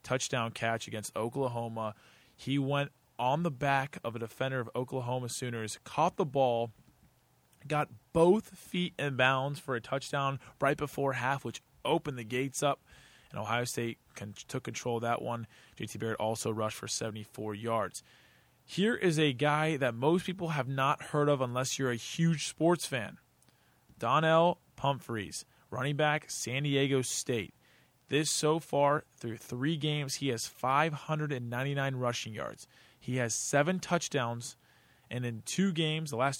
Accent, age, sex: American, 20-39, male